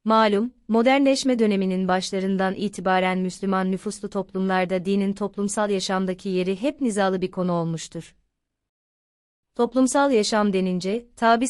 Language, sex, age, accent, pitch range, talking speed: Turkish, female, 30-49, native, 185-220 Hz, 110 wpm